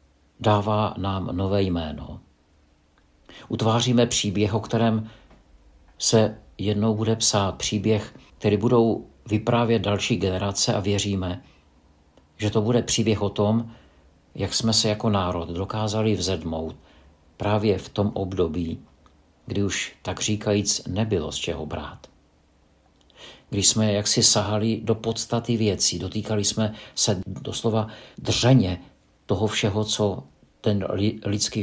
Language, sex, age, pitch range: Czech, male, 50-69, 90-110 Hz